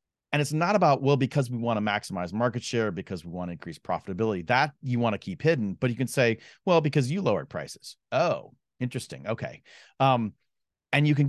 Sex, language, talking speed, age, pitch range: male, English, 195 wpm, 30-49, 105-140 Hz